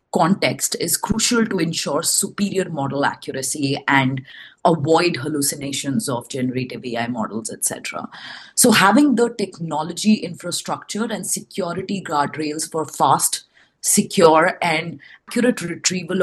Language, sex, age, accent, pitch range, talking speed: English, female, 30-49, Indian, 140-190 Hz, 110 wpm